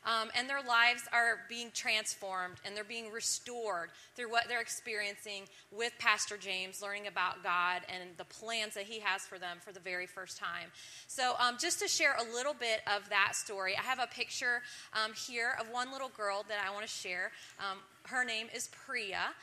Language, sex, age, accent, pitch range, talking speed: English, female, 30-49, American, 210-250 Hz, 200 wpm